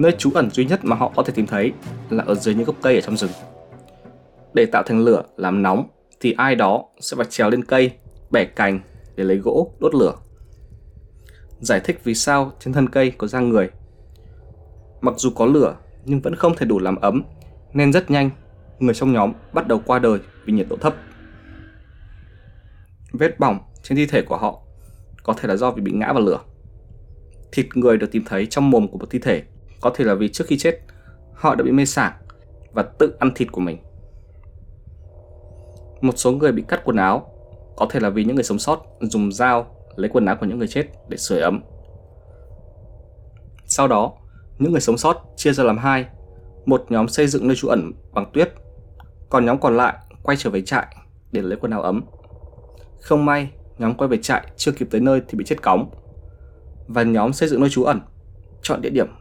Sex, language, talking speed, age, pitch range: male, Vietnamese, 205 wpm, 20-39, 90-130 Hz